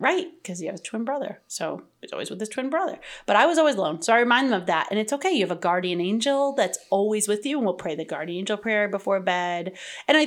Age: 30-49